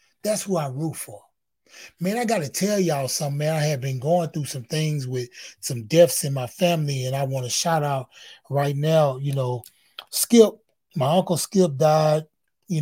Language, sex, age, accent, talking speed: English, male, 30-49, American, 195 wpm